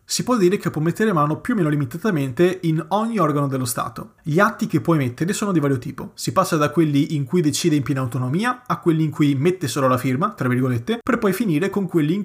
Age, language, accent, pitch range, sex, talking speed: 30-49, Italian, native, 130-175 Hz, male, 250 wpm